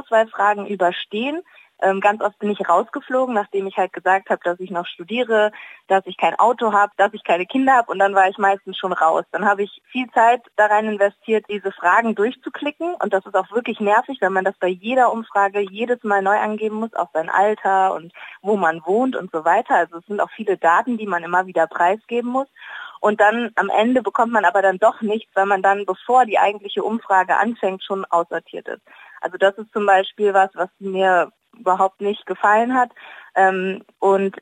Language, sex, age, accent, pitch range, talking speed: German, female, 20-39, German, 190-225 Hz, 205 wpm